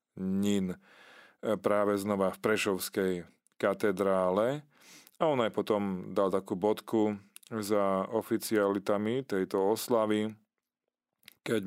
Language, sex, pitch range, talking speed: Slovak, male, 95-110 Hz, 85 wpm